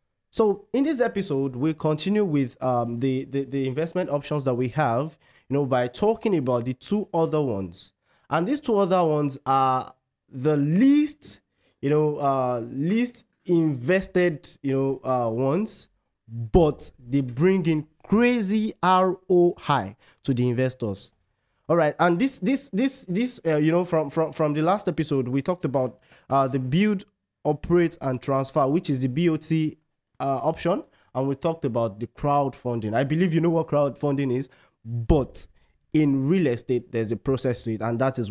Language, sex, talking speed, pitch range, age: English, male, 170 wpm, 125-170 Hz, 20-39